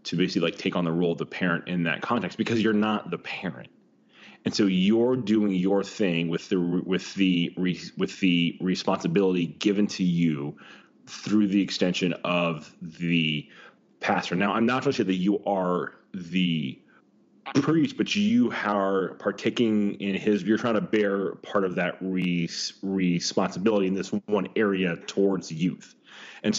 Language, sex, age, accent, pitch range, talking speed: English, male, 30-49, American, 90-105 Hz, 165 wpm